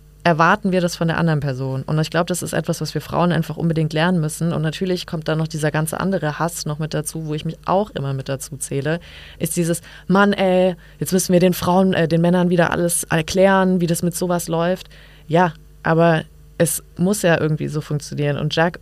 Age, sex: 20-39, female